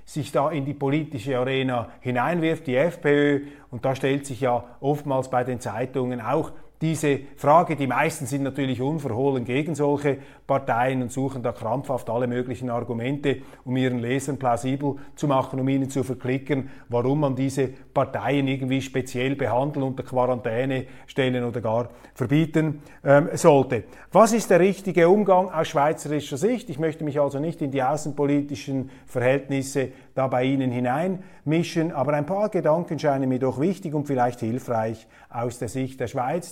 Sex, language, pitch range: male, German, 130-160 Hz